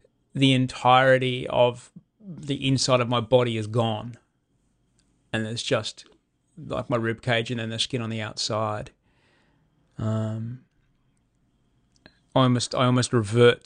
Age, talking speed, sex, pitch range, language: 20-39, 130 wpm, male, 110-125 Hz, English